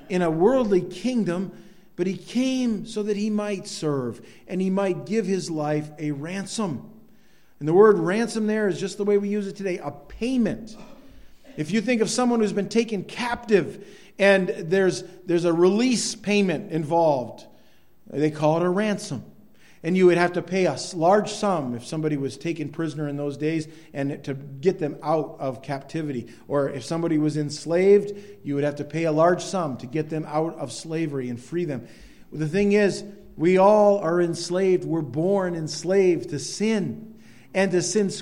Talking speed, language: 185 wpm, English